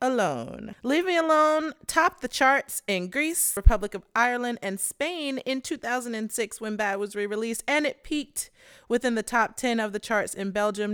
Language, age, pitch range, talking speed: English, 30-49, 190-245 Hz, 175 wpm